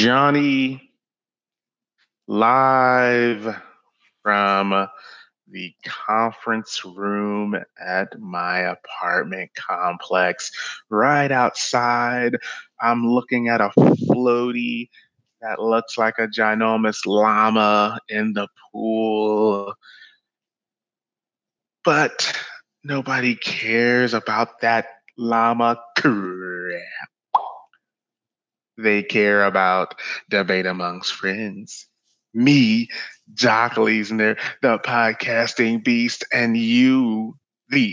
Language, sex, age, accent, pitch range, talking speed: English, male, 20-39, American, 105-125 Hz, 75 wpm